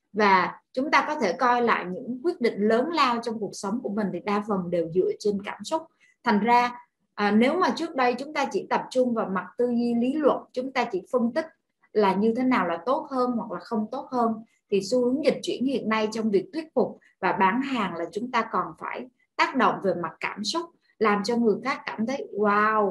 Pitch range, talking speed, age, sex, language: 195-250 Hz, 240 wpm, 20-39, female, Vietnamese